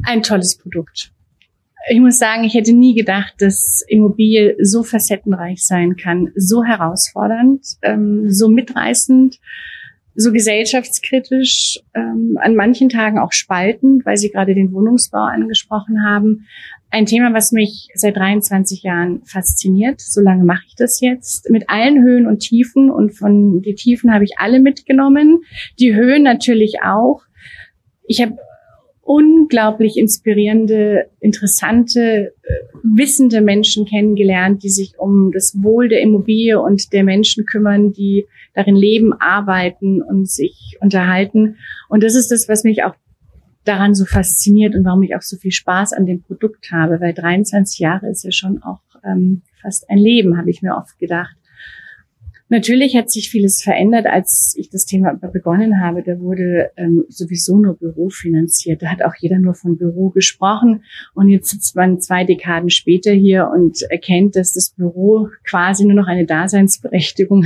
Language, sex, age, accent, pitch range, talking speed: German, female, 30-49, German, 185-225 Hz, 150 wpm